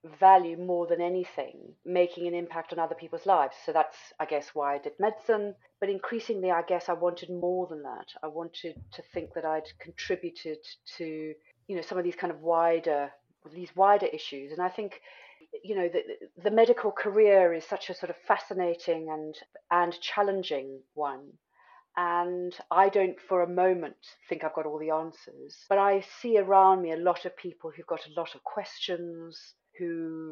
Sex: female